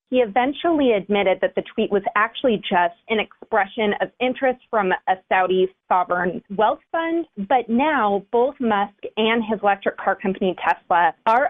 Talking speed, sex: 155 wpm, female